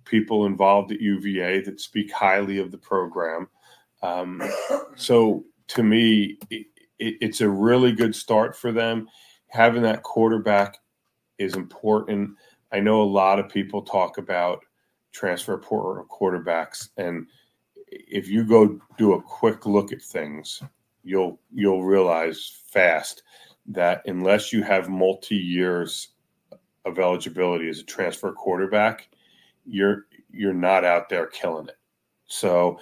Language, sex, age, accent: English, male, 30-49, American